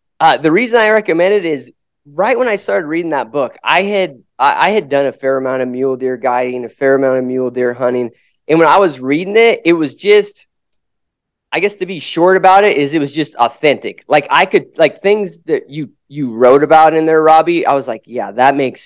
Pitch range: 130-170 Hz